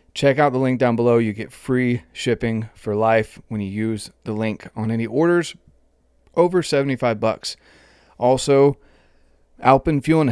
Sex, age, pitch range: male, 30-49, 110-130 Hz